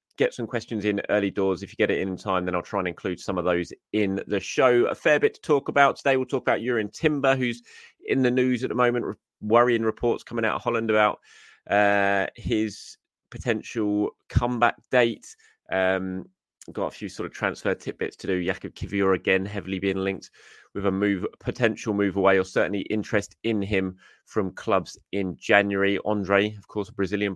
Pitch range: 95-115 Hz